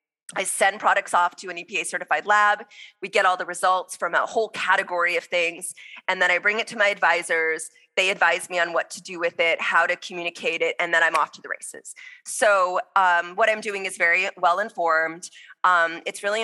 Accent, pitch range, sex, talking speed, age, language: American, 175-215 Hz, female, 210 wpm, 20-39, English